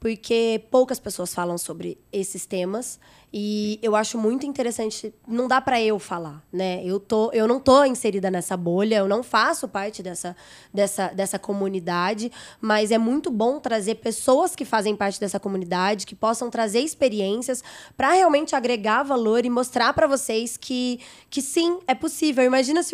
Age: 20-39